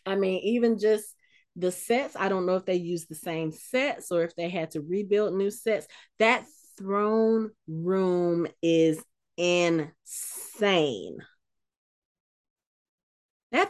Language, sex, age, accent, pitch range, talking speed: English, female, 30-49, American, 180-300 Hz, 125 wpm